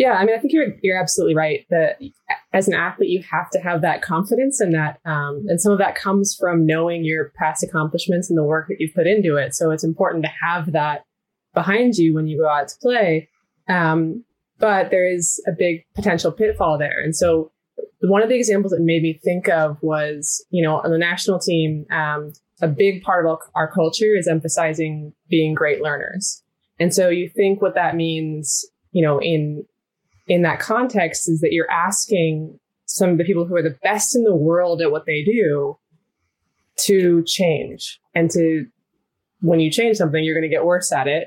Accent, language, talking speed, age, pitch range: American, English, 205 wpm, 20-39, 155-195 Hz